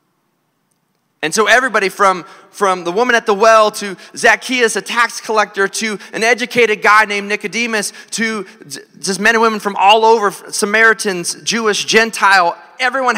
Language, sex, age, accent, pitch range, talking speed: English, male, 30-49, American, 135-215 Hz, 150 wpm